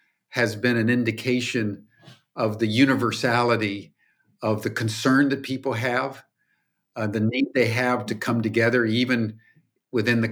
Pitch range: 110-135 Hz